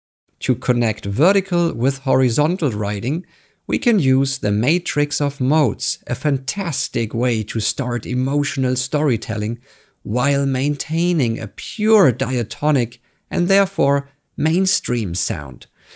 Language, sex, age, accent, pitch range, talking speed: English, male, 50-69, German, 115-155 Hz, 110 wpm